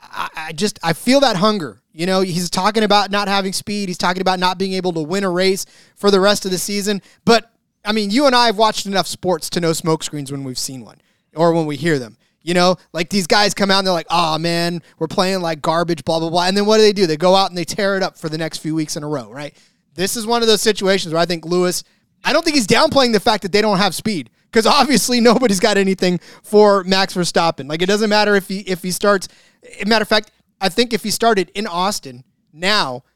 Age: 30-49